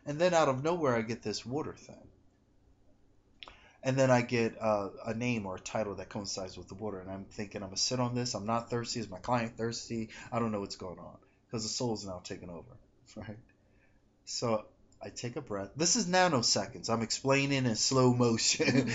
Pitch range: 105-130 Hz